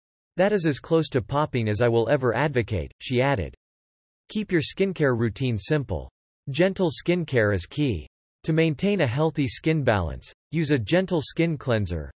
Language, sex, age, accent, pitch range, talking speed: English, male, 40-59, American, 110-150 Hz, 160 wpm